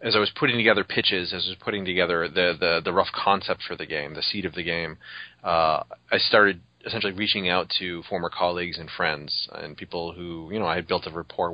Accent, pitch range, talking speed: American, 85-95 Hz, 230 wpm